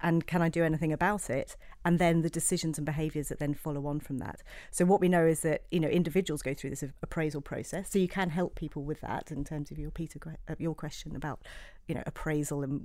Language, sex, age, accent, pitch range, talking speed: English, female, 40-59, British, 145-165 Hz, 245 wpm